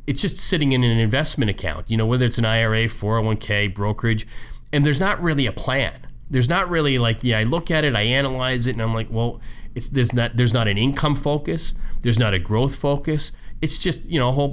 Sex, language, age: male, English, 30-49